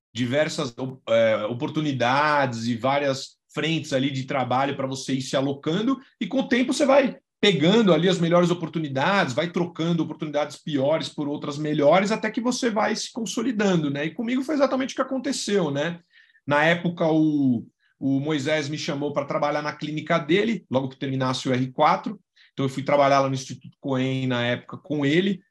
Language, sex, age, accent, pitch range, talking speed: Portuguese, male, 40-59, Brazilian, 130-180 Hz, 175 wpm